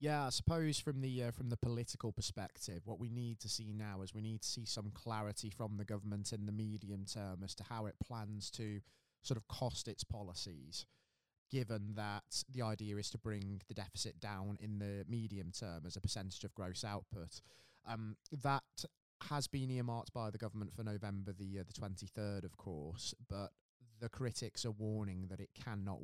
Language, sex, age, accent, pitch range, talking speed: English, male, 20-39, British, 100-115 Hz, 195 wpm